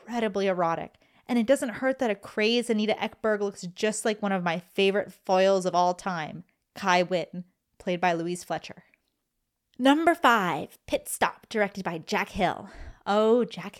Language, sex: English, female